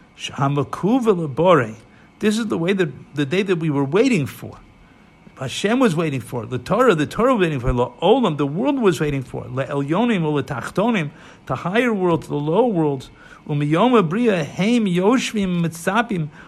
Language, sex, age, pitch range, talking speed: English, male, 50-69, 155-230 Hz, 175 wpm